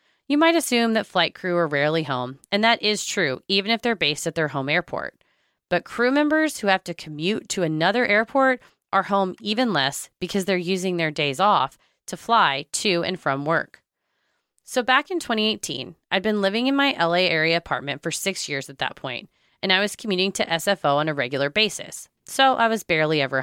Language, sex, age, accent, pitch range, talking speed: English, female, 30-49, American, 155-220 Hz, 205 wpm